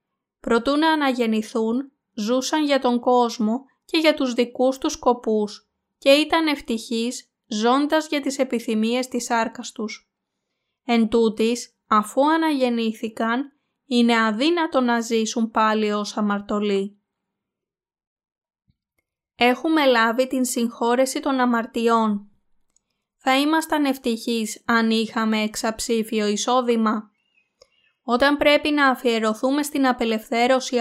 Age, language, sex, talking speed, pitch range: 20-39, Greek, female, 105 wpm, 220-265 Hz